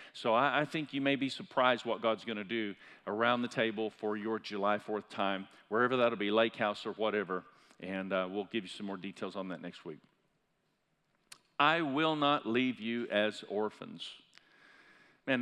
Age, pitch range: 50-69, 115-150 Hz